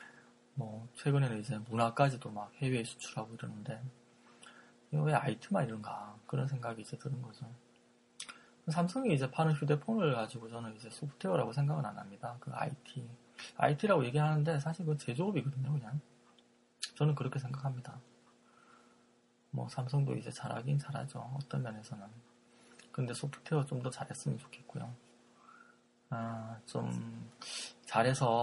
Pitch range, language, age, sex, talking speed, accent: 105-140 Hz, English, 20-39, male, 110 wpm, Korean